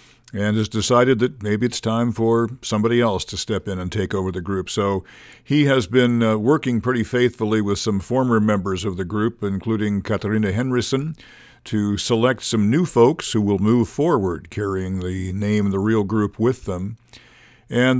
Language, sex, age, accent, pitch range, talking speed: English, male, 50-69, American, 100-120 Hz, 185 wpm